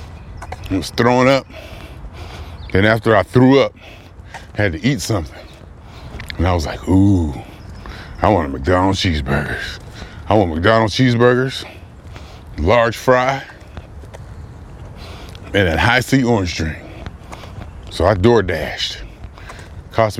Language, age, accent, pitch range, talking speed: English, 30-49, American, 90-120 Hz, 120 wpm